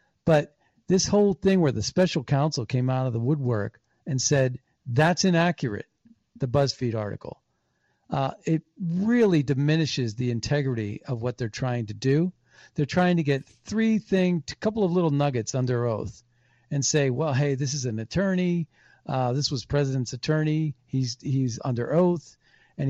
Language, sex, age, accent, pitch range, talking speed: English, male, 50-69, American, 125-160 Hz, 165 wpm